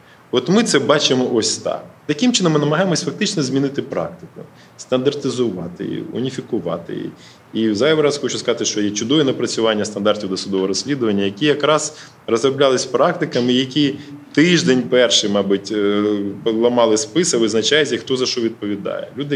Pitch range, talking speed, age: 105-145 Hz, 140 wpm, 20-39